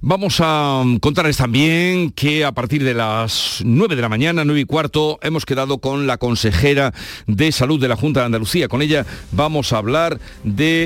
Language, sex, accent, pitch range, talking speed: Spanish, male, Spanish, 120-150 Hz, 190 wpm